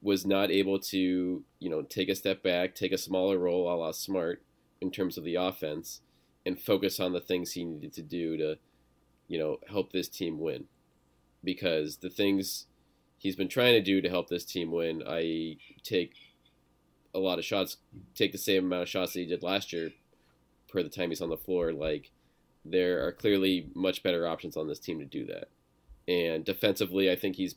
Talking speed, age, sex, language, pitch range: 200 wpm, 20-39, male, English, 80-100 Hz